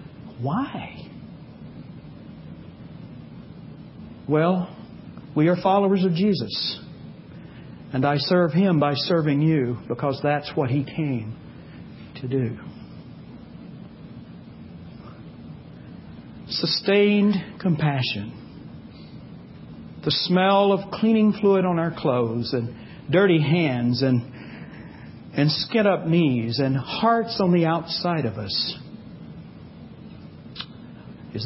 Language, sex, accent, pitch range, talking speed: English, male, American, 135-195 Hz, 90 wpm